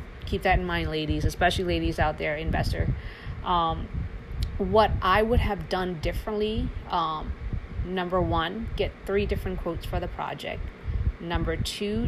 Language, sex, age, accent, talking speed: English, female, 30-49, American, 145 wpm